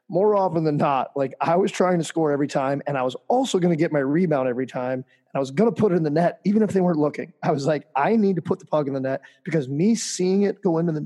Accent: American